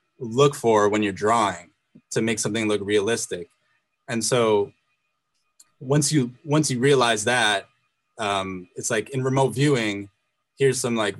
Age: 20-39